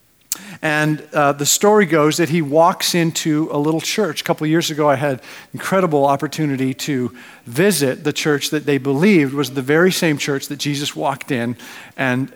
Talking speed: 180 wpm